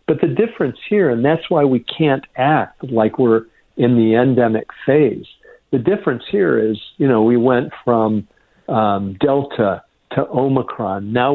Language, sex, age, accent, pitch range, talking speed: English, male, 50-69, American, 115-140 Hz, 160 wpm